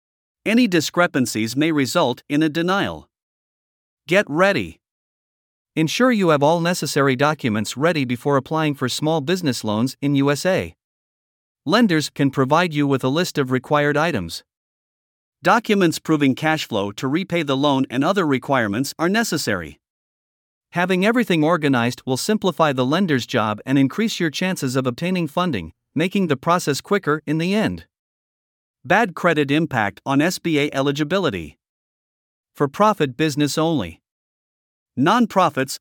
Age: 50-69